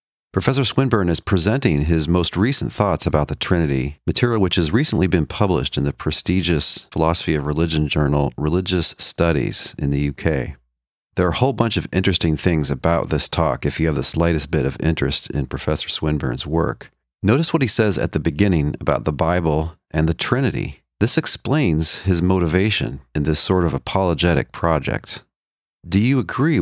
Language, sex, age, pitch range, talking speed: English, male, 40-59, 75-95 Hz, 175 wpm